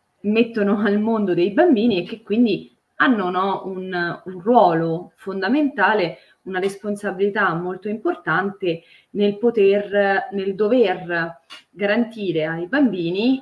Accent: native